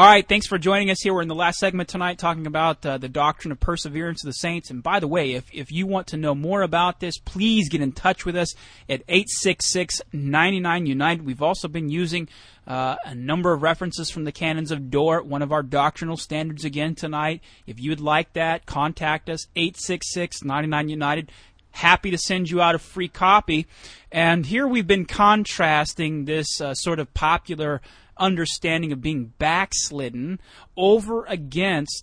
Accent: American